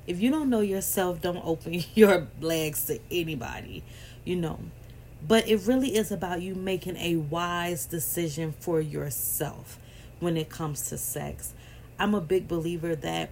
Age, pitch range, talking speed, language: 30-49, 150-190 Hz, 160 wpm, English